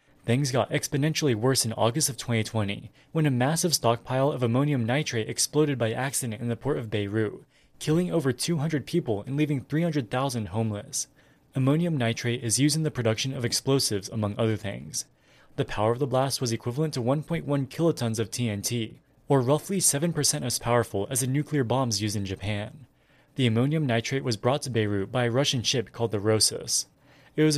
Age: 20-39